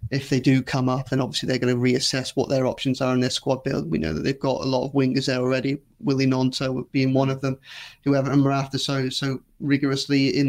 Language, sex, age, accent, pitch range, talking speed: English, male, 30-49, British, 130-140 Hz, 250 wpm